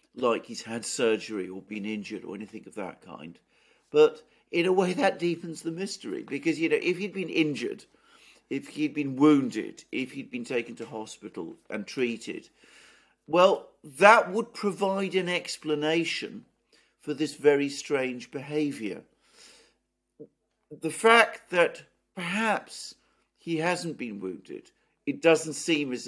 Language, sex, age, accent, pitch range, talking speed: English, male, 50-69, British, 125-180 Hz, 145 wpm